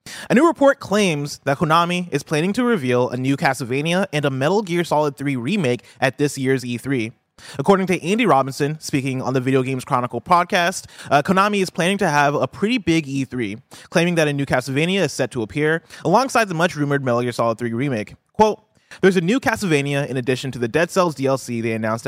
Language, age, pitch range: English, 20-39, 130-180 Hz